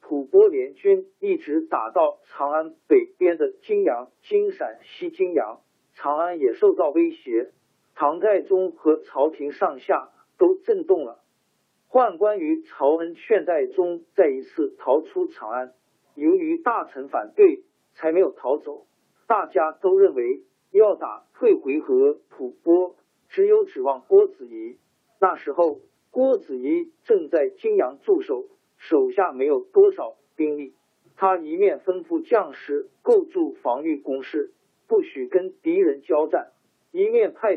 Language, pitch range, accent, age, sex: Chinese, 320-400 Hz, native, 50-69, male